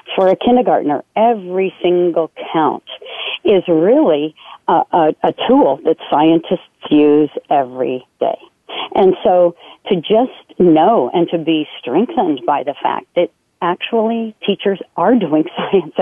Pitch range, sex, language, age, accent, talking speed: 155-210 Hz, female, English, 50-69, American, 125 wpm